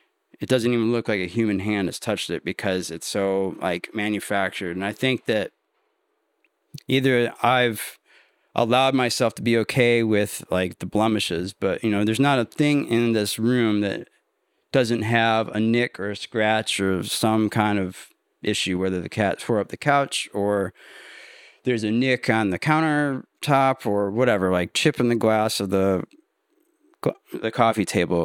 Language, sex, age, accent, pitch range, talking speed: English, male, 30-49, American, 100-125 Hz, 170 wpm